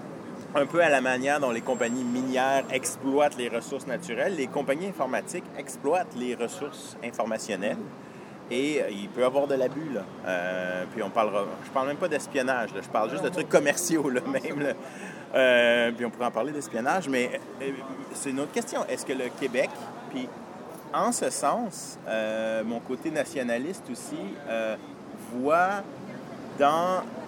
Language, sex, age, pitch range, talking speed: French, male, 30-49, 115-145 Hz, 160 wpm